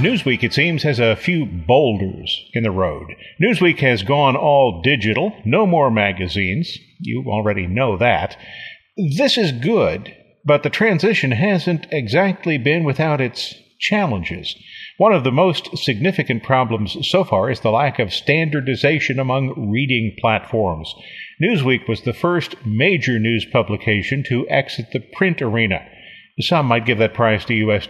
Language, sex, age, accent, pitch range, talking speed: English, male, 50-69, American, 110-155 Hz, 150 wpm